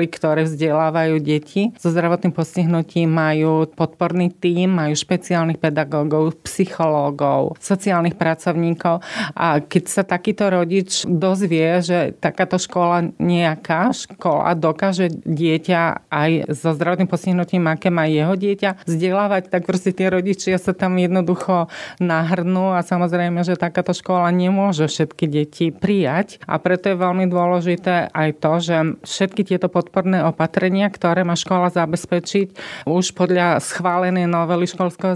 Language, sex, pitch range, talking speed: Slovak, female, 160-185 Hz, 130 wpm